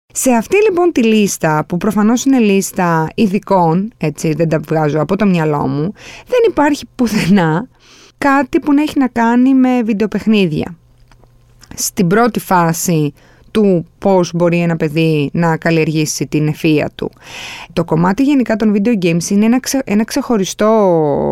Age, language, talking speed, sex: 20-39, Greek, 145 wpm, female